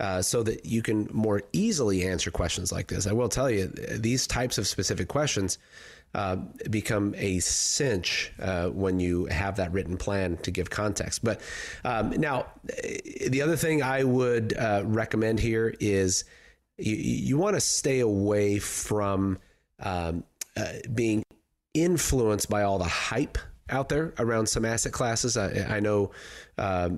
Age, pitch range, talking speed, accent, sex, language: 30-49, 95-120 Hz, 160 wpm, American, male, English